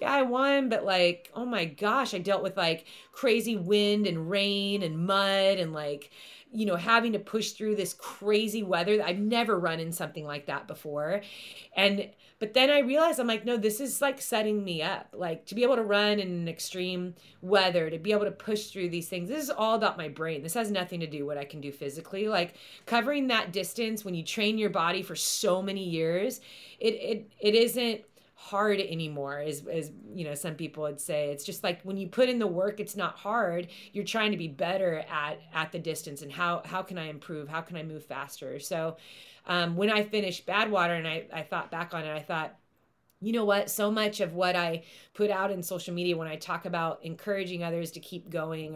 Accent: American